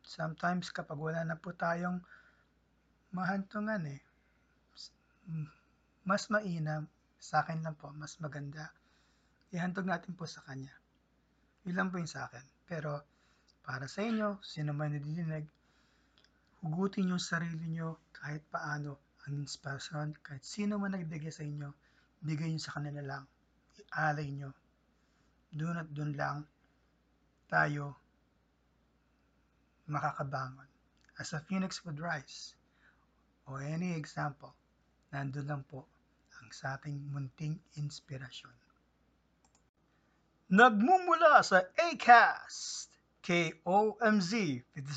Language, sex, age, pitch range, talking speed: English, male, 20-39, 145-195 Hz, 100 wpm